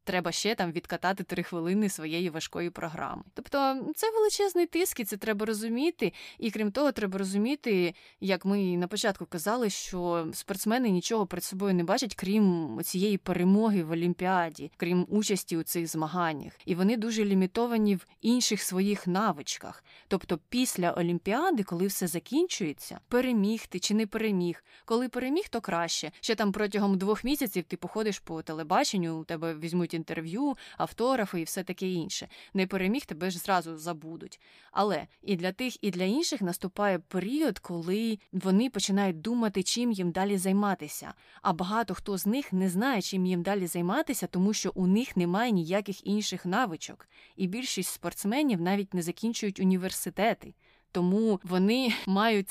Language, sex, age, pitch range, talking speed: Ukrainian, female, 20-39, 180-220 Hz, 155 wpm